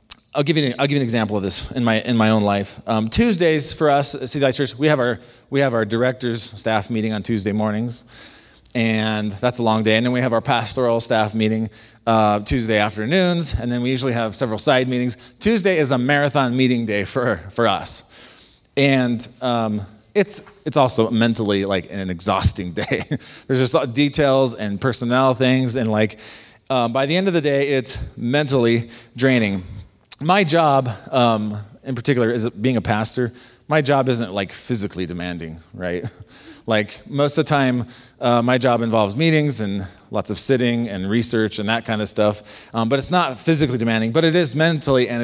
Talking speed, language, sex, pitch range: 195 wpm, English, male, 105-135 Hz